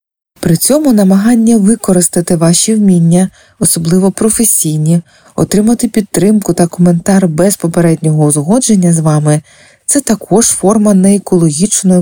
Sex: female